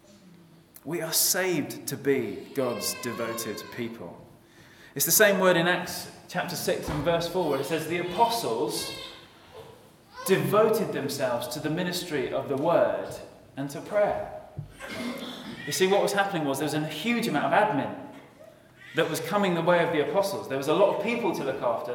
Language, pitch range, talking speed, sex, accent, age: English, 130-175 Hz, 180 wpm, male, British, 20-39